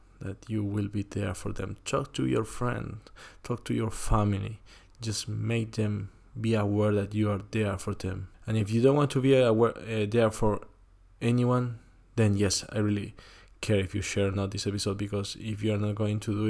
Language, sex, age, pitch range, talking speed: English, male, 20-39, 95-110 Hz, 205 wpm